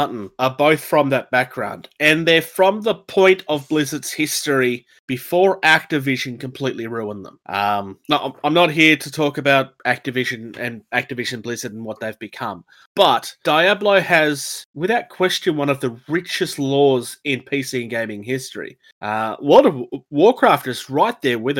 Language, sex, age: English, male, 30-49